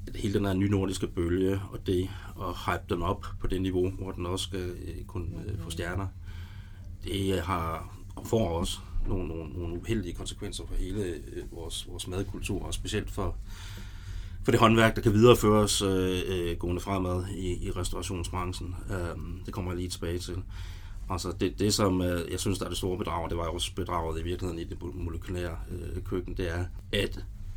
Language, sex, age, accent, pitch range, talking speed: Danish, male, 30-49, native, 90-100 Hz, 195 wpm